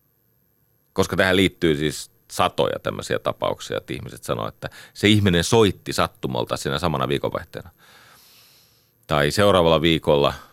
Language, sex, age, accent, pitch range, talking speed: Finnish, male, 40-59, native, 85-120 Hz, 120 wpm